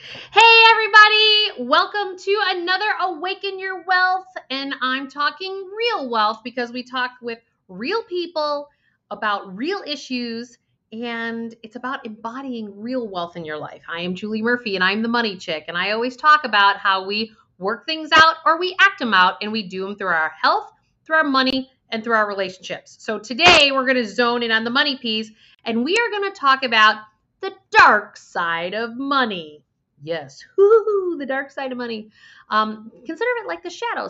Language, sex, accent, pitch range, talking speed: English, female, American, 215-315 Hz, 185 wpm